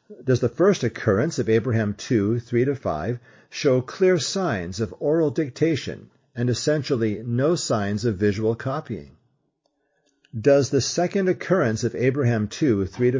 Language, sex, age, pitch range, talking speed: English, male, 50-69, 105-150 Hz, 125 wpm